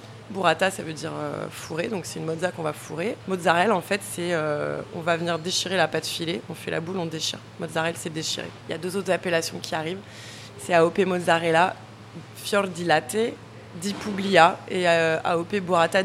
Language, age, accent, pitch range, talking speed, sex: French, 20-39, French, 155-180 Hz, 200 wpm, female